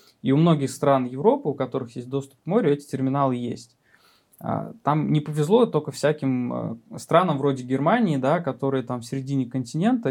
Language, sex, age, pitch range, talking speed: Russian, male, 20-39, 125-145 Hz, 165 wpm